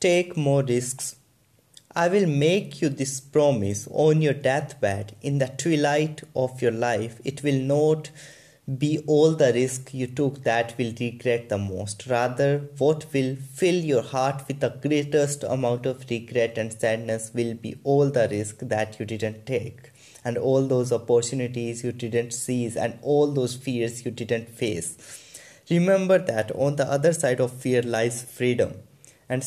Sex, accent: male, Indian